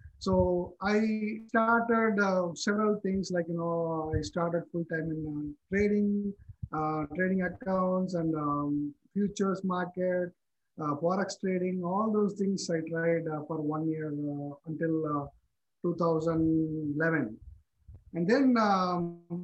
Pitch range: 155-185 Hz